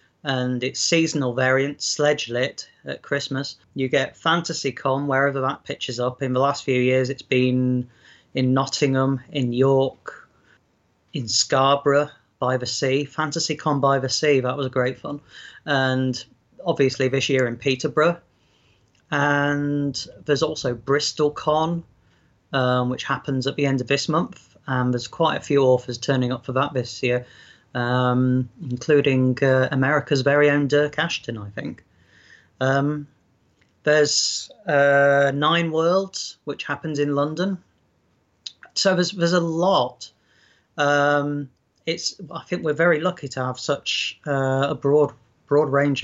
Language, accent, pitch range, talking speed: English, British, 125-145 Hz, 145 wpm